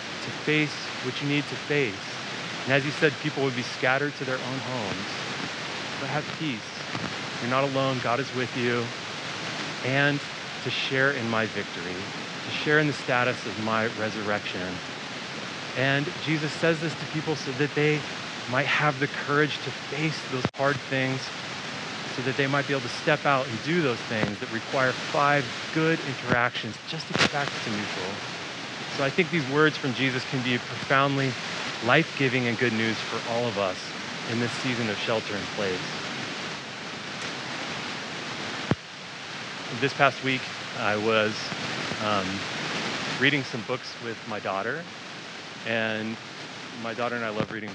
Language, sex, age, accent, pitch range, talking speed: English, male, 30-49, American, 115-140 Hz, 160 wpm